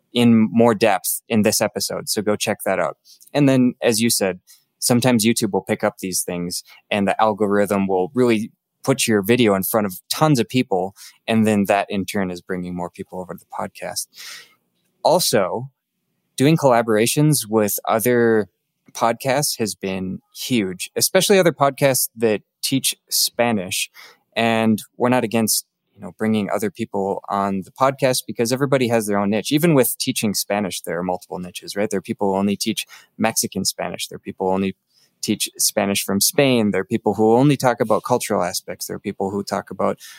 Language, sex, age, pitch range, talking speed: English, male, 20-39, 100-120 Hz, 185 wpm